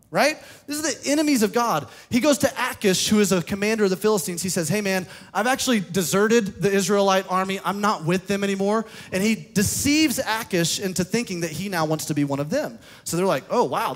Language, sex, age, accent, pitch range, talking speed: English, male, 30-49, American, 165-225 Hz, 230 wpm